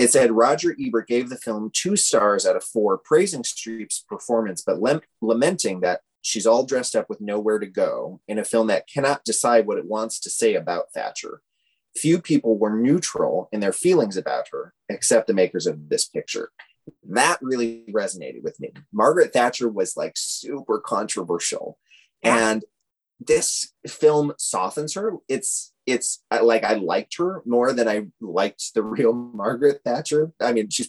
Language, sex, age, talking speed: English, male, 30-49, 170 wpm